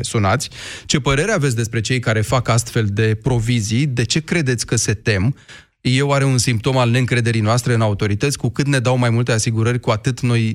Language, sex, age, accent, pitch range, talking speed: Romanian, male, 30-49, native, 110-135 Hz, 205 wpm